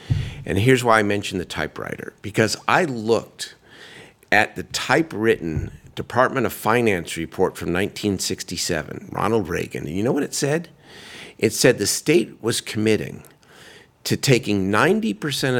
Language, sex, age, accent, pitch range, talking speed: English, male, 50-69, American, 105-135 Hz, 140 wpm